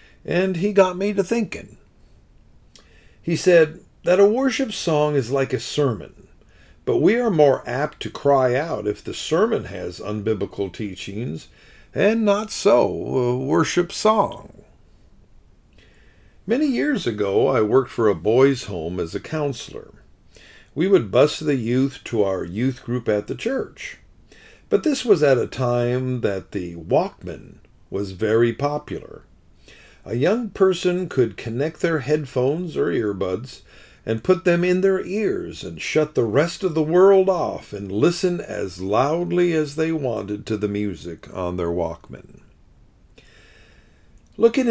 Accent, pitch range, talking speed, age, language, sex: American, 105-175 Hz, 145 wpm, 50-69, English, male